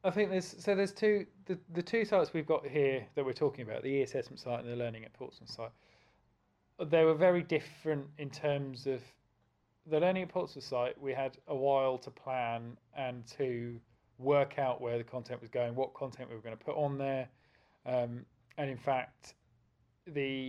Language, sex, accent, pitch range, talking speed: English, male, British, 120-135 Hz, 200 wpm